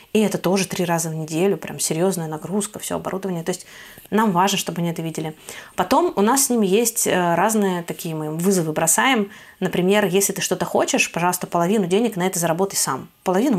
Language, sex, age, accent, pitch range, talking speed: Russian, female, 20-39, native, 170-210 Hz, 195 wpm